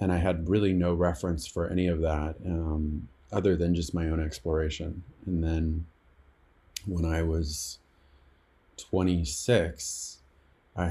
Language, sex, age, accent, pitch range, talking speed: English, male, 30-49, American, 80-90 Hz, 130 wpm